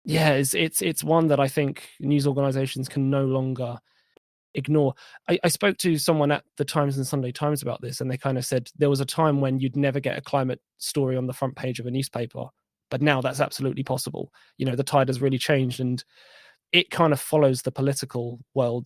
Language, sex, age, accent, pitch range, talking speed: English, male, 20-39, British, 130-145 Hz, 225 wpm